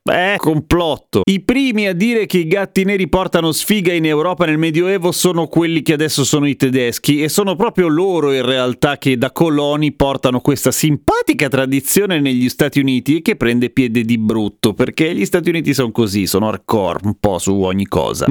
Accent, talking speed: native, 190 wpm